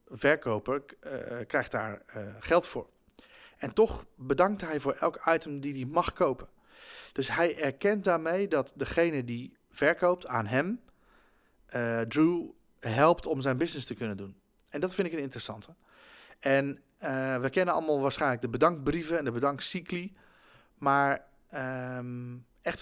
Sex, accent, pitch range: male, Dutch, 125-165 Hz